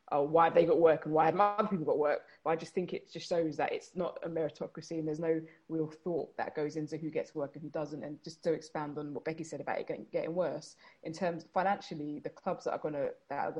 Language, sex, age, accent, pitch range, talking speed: English, female, 20-39, British, 150-165 Hz, 275 wpm